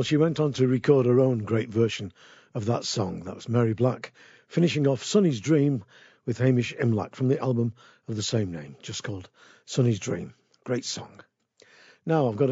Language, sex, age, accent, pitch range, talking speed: English, male, 50-69, British, 120-150 Hz, 185 wpm